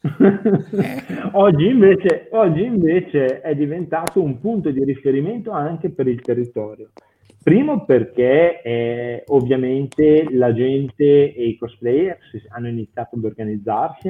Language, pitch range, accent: Italian, 120-155 Hz, native